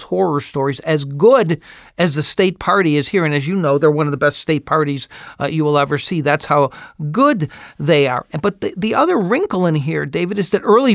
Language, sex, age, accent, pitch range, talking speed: English, male, 50-69, American, 150-185 Hz, 230 wpm